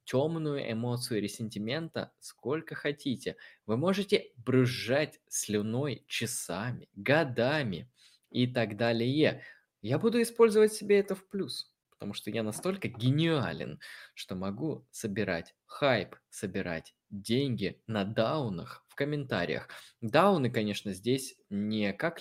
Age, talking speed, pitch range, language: 20-39, 110 wpm, 100-135 Hz, Russian